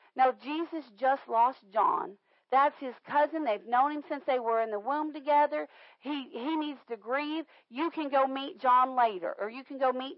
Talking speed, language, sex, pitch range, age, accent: 200 wpm, English, female, 240-295 Hz, 40-59, American